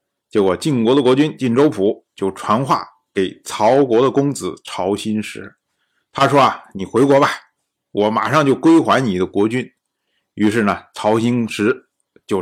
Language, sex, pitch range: Chinese, male, 100-130 Hz